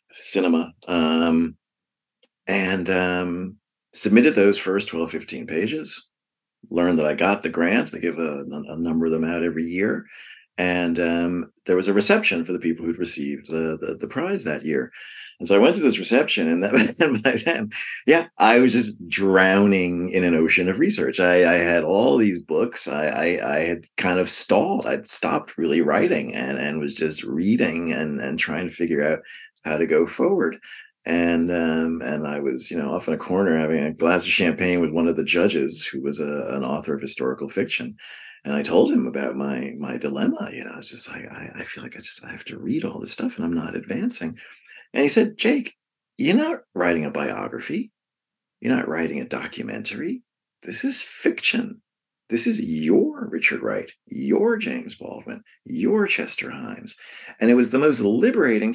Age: 40-59